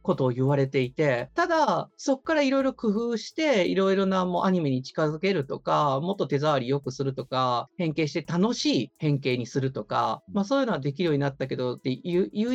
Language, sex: Japanese, male